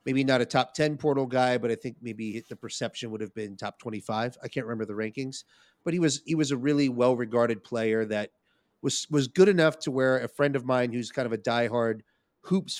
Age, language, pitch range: 30-49, English, 110-135 Hz